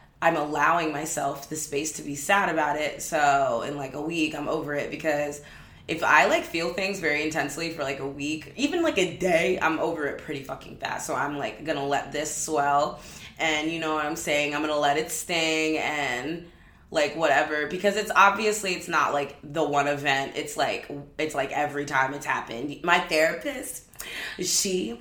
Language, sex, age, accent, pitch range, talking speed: English, female, 20-39, American, 150-185 Hz, 195 wpm